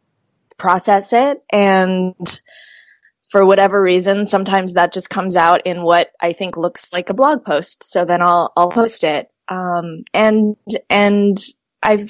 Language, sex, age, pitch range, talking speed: English, female, 20-39, 175-200 Hz, 150 wpm